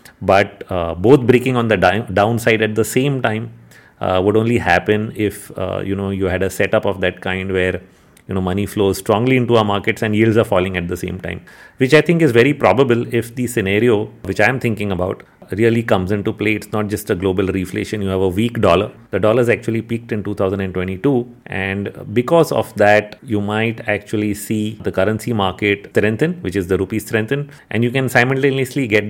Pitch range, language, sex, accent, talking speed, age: 95-115 Hz, English, male, Indian, 210 wpm, 30-49